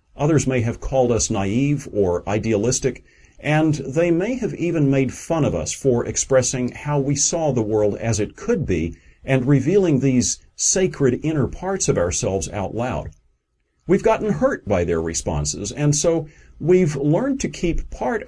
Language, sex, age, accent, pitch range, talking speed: English, male, 50-69, American, 95-145 Hz, 165 wpm